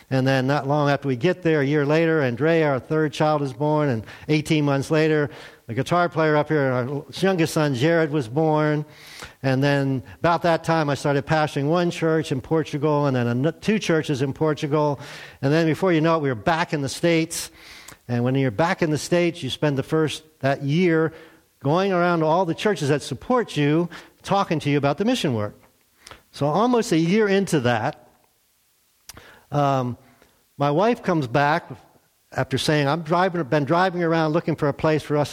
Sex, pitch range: male, 135-165 Hz